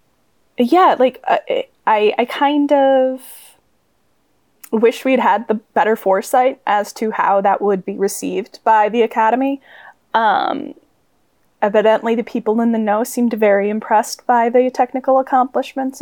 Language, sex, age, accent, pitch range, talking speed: English, female, 10-29, American, 220-270 Hz, 140 wpm